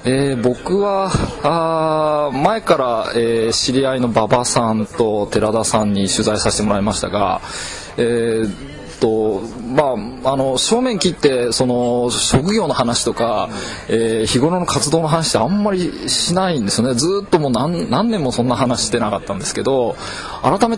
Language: Japanese